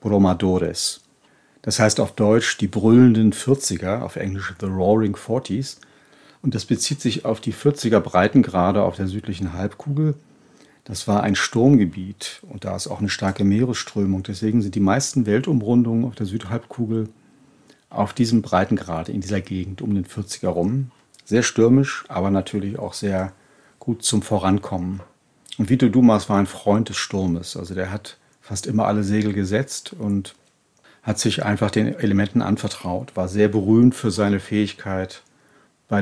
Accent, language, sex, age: German, German, male, 40-59